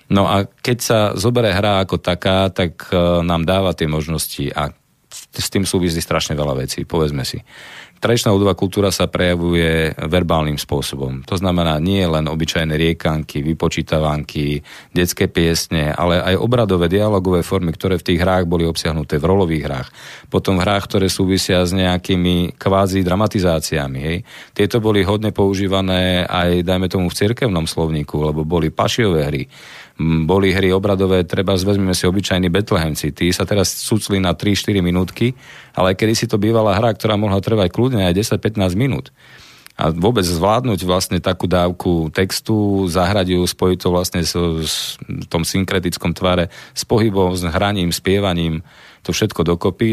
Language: Slovak